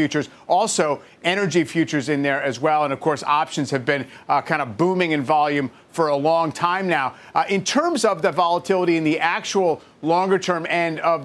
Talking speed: 205 wpm